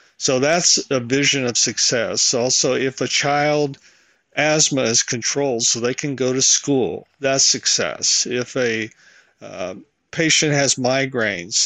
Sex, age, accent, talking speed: male, 50-69, American, 140 wpm